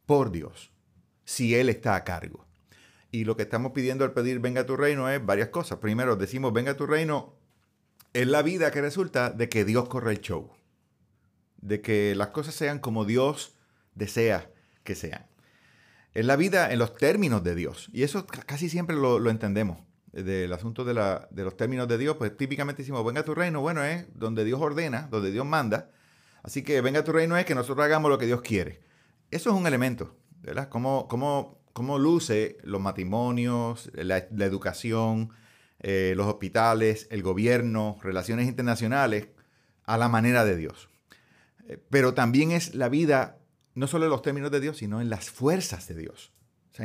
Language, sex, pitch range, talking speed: Spanish, male, 105-140 Hz, 185 wpm